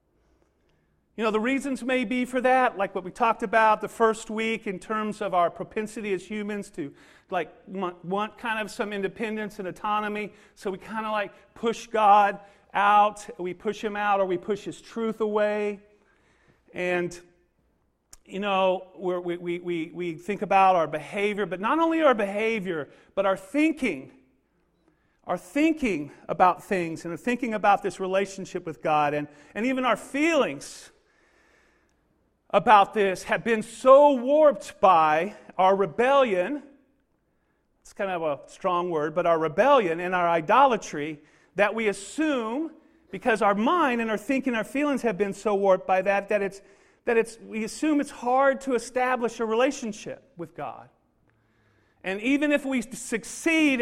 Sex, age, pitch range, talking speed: male, 40-59, 190-245 Hz, 165 wpm